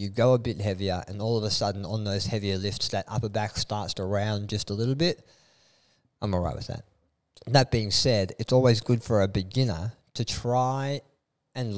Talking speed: 210 wpm